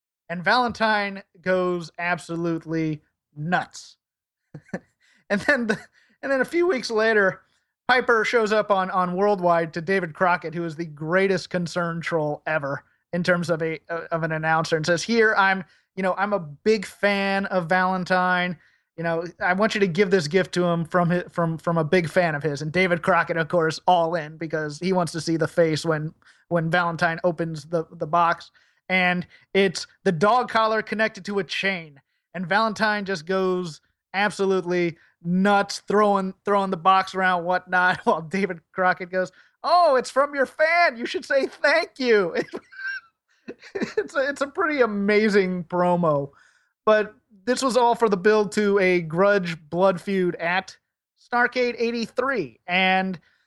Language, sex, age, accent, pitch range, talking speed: English, male, 30-49, American, 170-210 Hz, 165 wpm